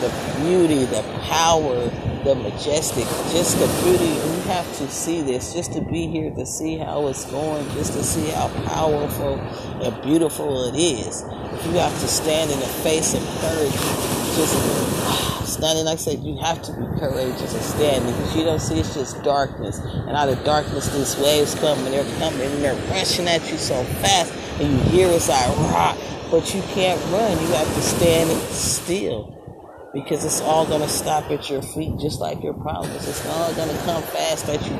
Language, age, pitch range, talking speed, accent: English, 40-59, 135-165 Hz, 195 wpm, American